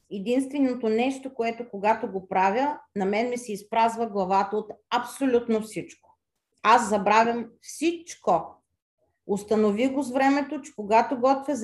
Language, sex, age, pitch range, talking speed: Bulgarian, female, 40-59, 195-260 Hz, 130 wpm